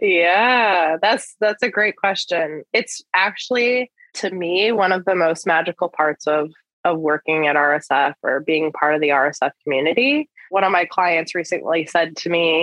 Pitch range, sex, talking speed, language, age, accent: 160-190 Hz, female, 170 wpm, English, 20-39, American